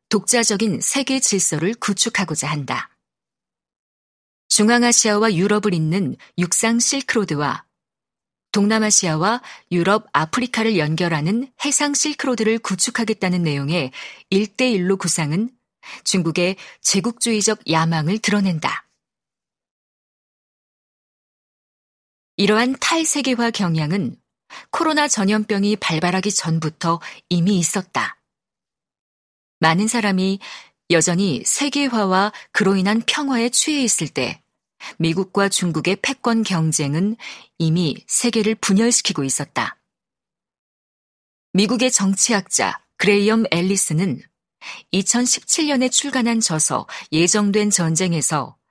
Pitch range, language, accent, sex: 175-235 Hz, Korean, native, female